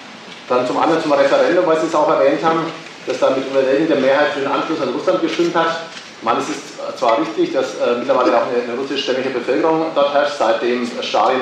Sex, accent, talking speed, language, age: male, German, 200 wpm, German, 40-59